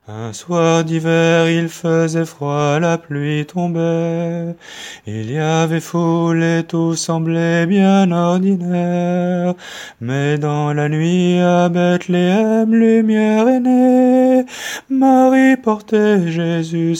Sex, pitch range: male, 150-220 Hz